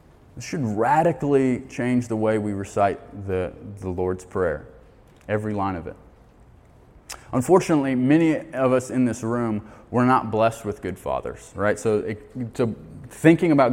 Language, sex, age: English, male, 20-39